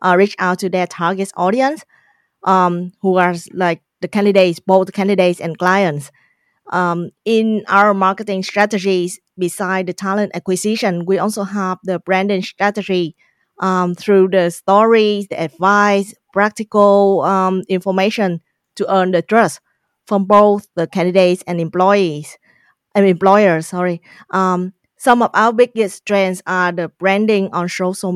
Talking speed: 135 wpm